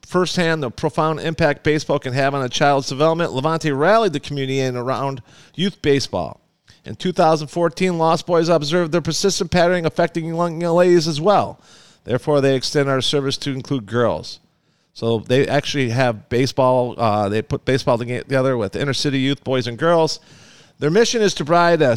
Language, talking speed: English, 175 wpm